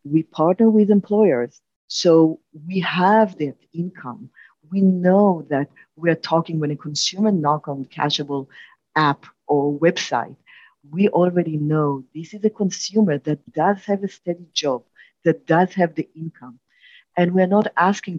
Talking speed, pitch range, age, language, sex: 150 wpm, 150-200 Hz, 50-69, English, female